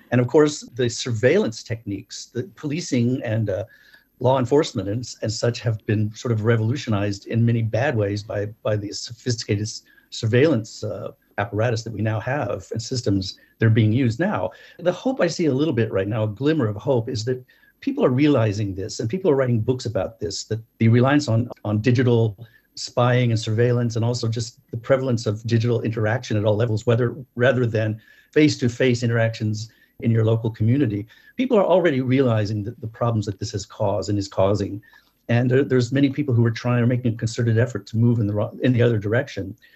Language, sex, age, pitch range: English, male, 50-69, 110-130 Hz